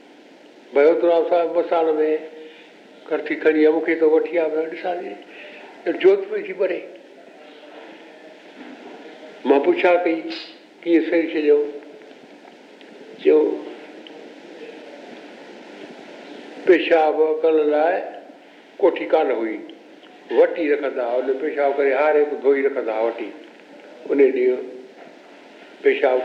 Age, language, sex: 60-79, Hindi, male